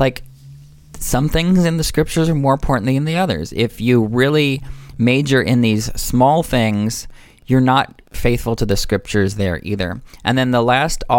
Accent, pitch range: American, 105-130 Hz